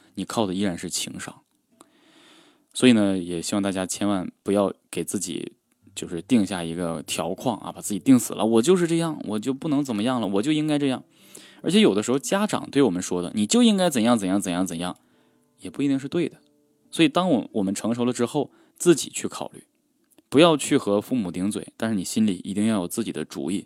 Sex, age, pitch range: male, 20-39, 90-145 Hz